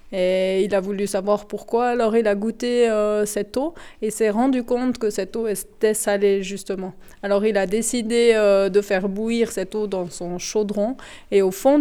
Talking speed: 200 wpm